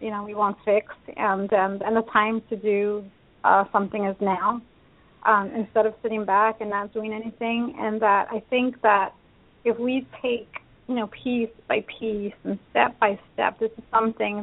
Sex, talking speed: female, 190 wpm